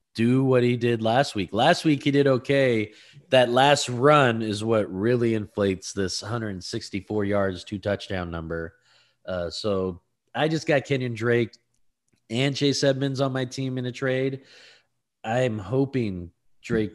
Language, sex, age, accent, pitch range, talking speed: English, male, 20-39, American, 90-125 Hz, 150 wpm